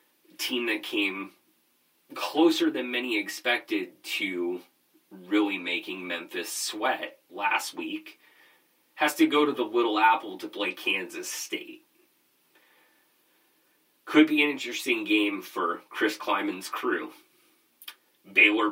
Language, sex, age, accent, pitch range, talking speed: English, male, 30-49, American, 300-350 Hz, 110 wpm